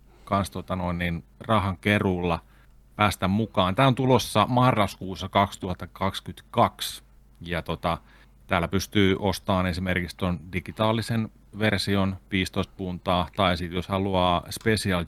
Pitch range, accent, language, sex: 80-95 Hz, native, Finnish, male